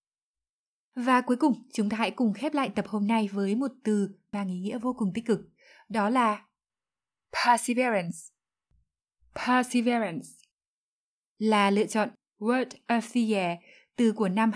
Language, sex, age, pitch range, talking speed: Vietnamese, female, 20-39, 200-245 Hz, 150 wpm